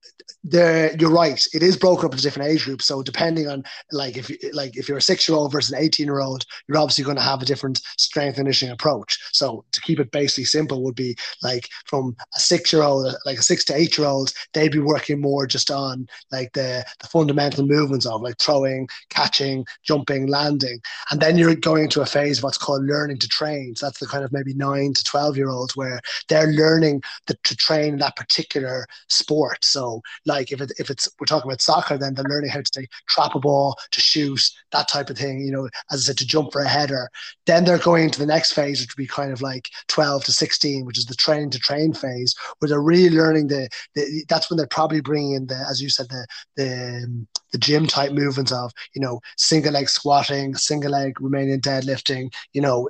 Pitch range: 135-155 Hz